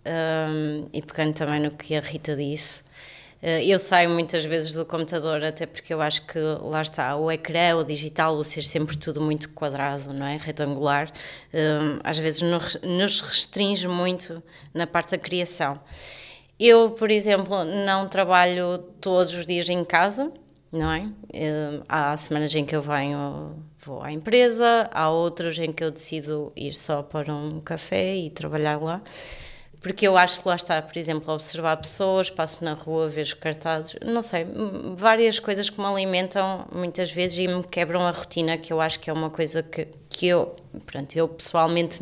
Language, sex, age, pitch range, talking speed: Portuguese, female, 20-39, 155-180 Hz, 175 wpm